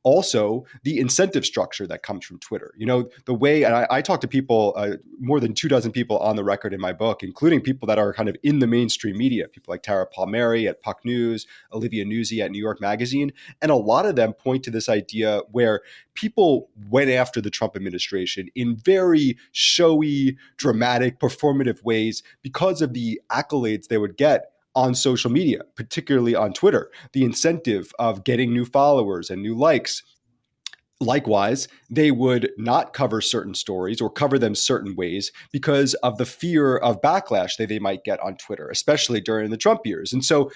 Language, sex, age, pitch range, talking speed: English, male, 30-49, 105-135 Hz, 190 wpm